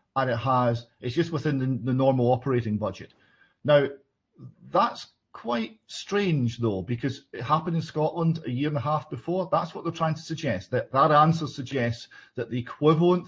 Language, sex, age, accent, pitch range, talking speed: English, male, 40-59, British, 110-135 Hz, 180 wpm